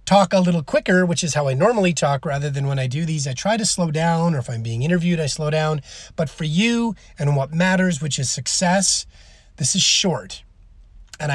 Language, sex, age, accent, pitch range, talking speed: English, male, 30-49, American, 140-190 Hz, 220 wpm